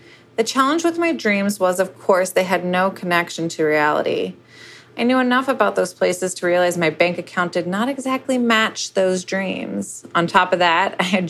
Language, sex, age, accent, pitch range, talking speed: English, female, 30-49, American, 155-195 Hz, 195 wpm